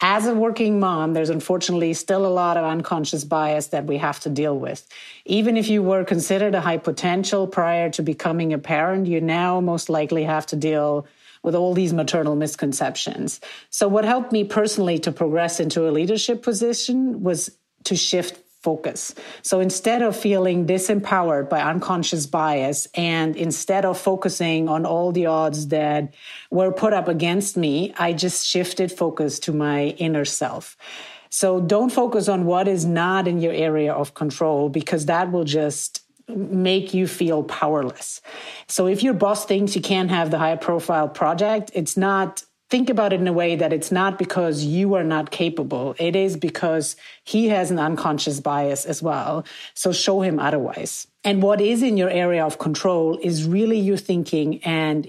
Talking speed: 180 wpm